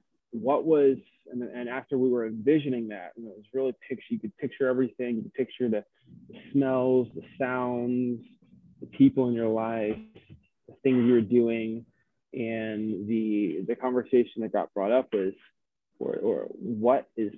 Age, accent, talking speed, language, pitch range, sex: 20-39, American, 165 wpm, English, 110-130 Hz, male